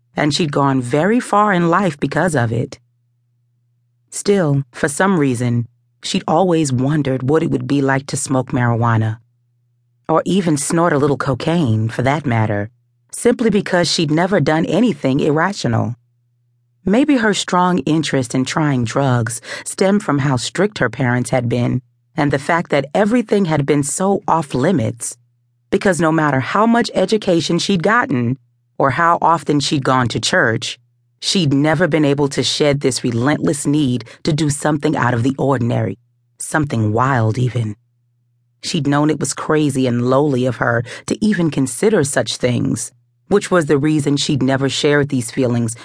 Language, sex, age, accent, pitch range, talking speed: English, female, 40-59, American, 120-160 Hz, 160 wpm